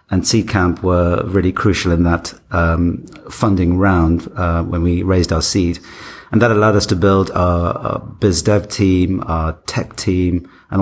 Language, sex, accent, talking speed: English, male, British, 175 wpm